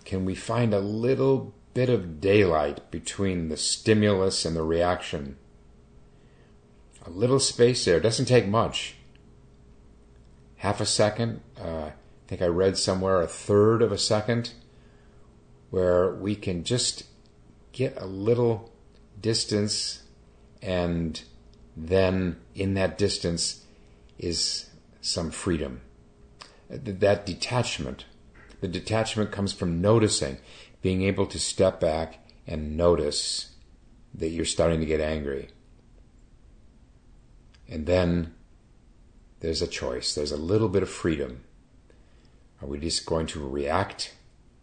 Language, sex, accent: English, male, American